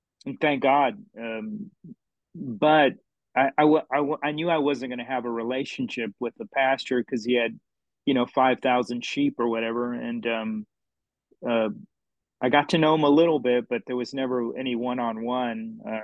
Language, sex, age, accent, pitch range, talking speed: English, male, 30-49, American, 125-150 Hz, 180 wpm